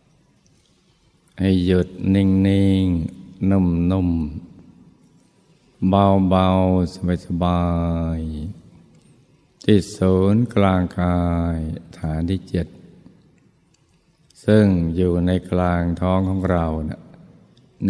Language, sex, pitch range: Thai, male, 85-95 Hz